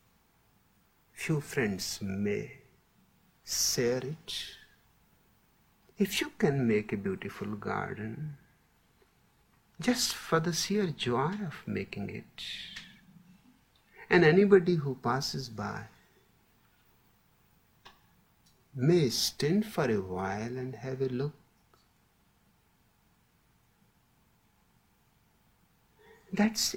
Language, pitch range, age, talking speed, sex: English, 110-180 Hz, 60-79, 80 wpm, male